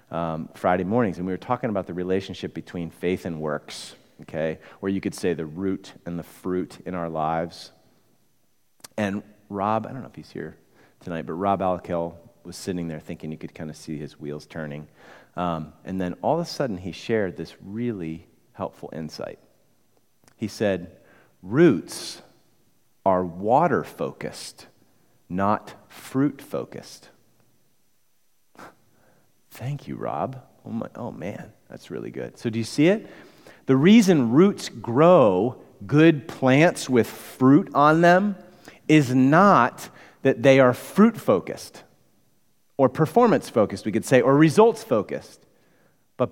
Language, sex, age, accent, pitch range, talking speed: English, male, 40-59, American, 90-150 Hz, 140 wpm